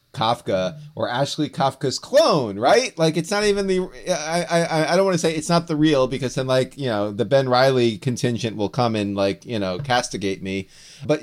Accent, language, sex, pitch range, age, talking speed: American, English, male, 125-165 Hz, 30-49, 215 wpm